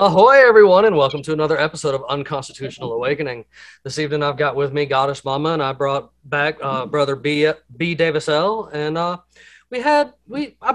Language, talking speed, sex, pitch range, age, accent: English, 190 wpm, male, 145-190 Hz, 30-49, American